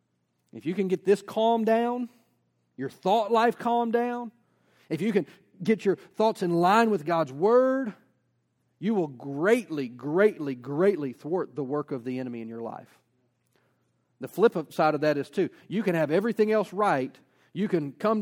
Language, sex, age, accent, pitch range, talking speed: English, male, 40-59, American, 135-215 Hz, 175 wpm